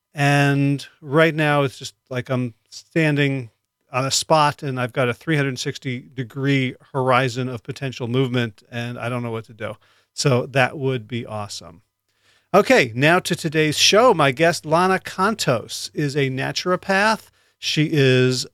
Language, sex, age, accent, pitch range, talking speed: English, male, 40-59, American, 125-155 Hz, 150 wpm